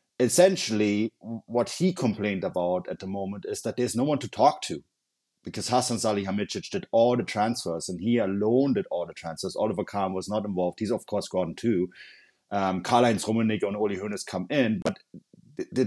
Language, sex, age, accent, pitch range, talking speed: English, male, 30-49, German, 95-115 Hz, 190 wpm